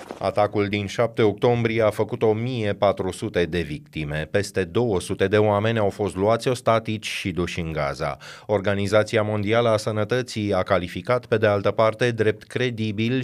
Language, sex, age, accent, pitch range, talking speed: Romanian, male, 30-49, native, 95-115 Hz, 150 wpm